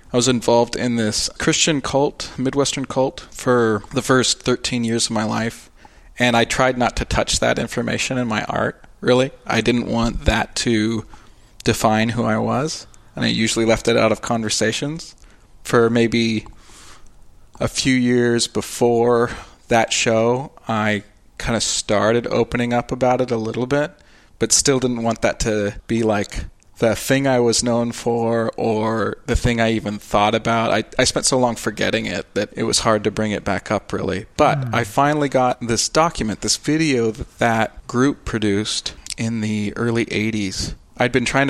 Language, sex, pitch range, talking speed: English, male, 110-125 Hz, 175 wpm